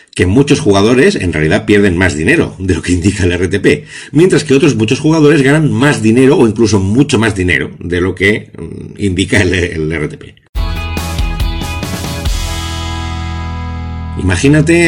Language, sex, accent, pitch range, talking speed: Spanish, male, Spanish, 80-115 Hz, 135 wpm